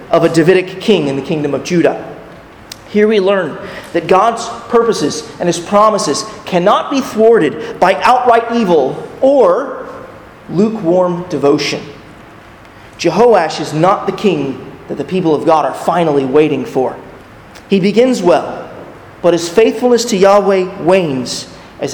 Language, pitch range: English, 160-220 Hz